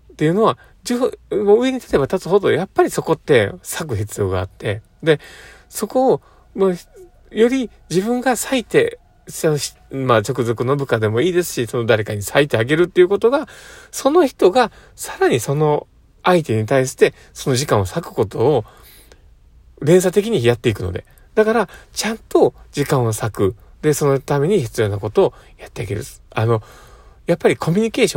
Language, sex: Japanese, male